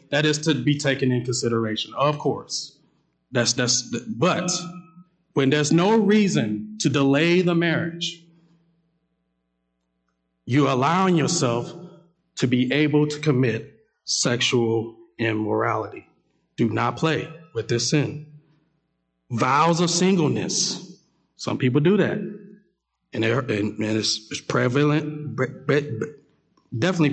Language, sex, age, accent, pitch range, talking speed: English, male, 40-59, American, 125-175 Hz, 110 wpm